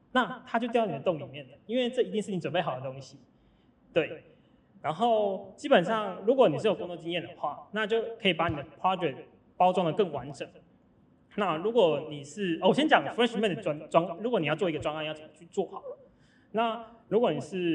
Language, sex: Chinese, male